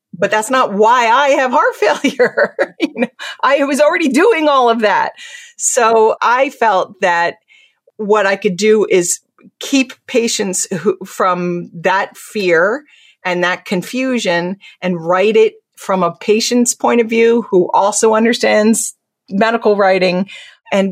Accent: American